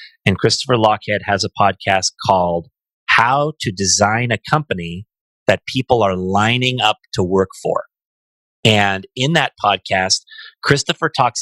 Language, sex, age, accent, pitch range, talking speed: English, male, 30-49, American, 100-125 Hz, 135 wpm